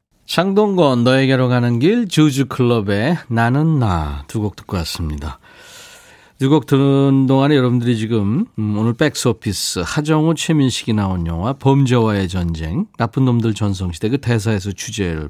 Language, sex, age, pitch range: Korean, male, 40-59, 100-140 Hz